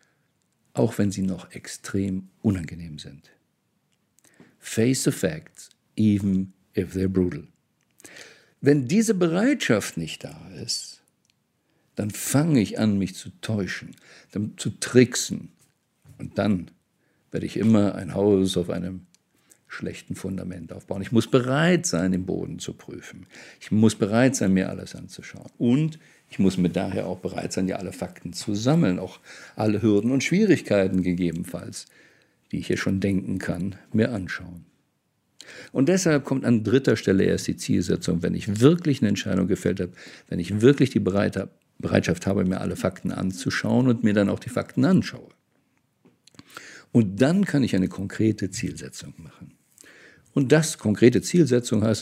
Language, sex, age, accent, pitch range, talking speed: German, male, 50-69, German, 95-125 Hz, 150 wpm